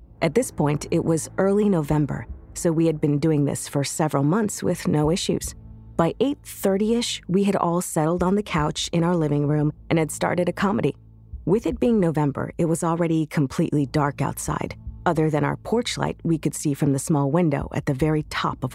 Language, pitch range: English, 145-180 Hz